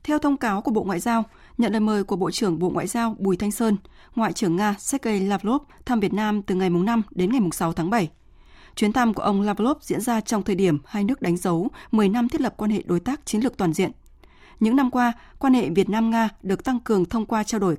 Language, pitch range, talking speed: Vietnamese, 195-245 Hz, 255 wpm